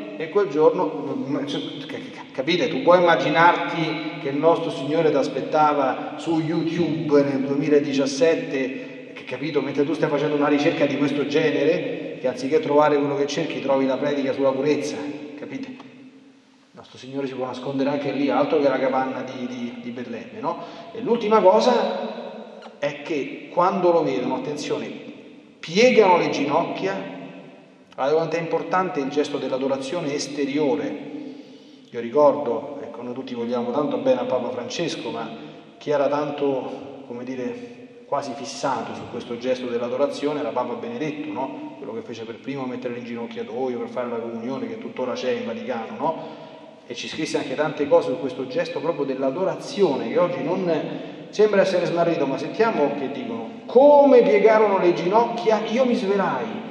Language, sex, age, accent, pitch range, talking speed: Italian, male, 30-49, native, 135-205 Hz, 160 wpm